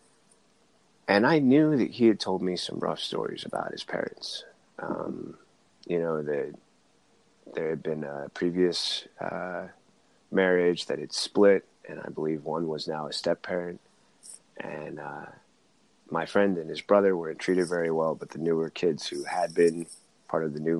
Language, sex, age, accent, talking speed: English, male, 30-49, American, 170 wpm